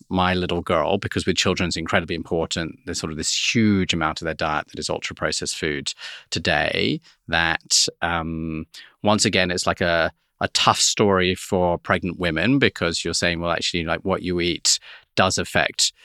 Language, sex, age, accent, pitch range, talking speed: English, male, 30-49, British, 85-105 Hz, 175 wpm